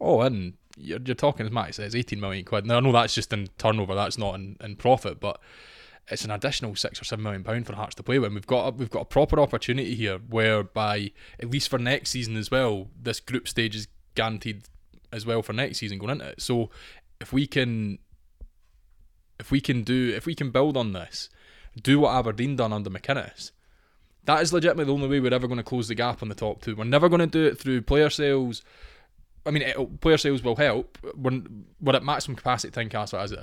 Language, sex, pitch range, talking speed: English, male, 105-135 Hz, 230 wpm